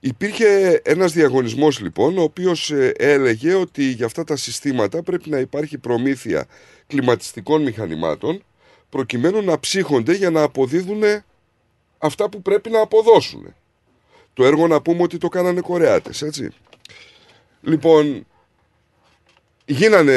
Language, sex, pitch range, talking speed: Greek, male, 130-190 Hz, 120 wpm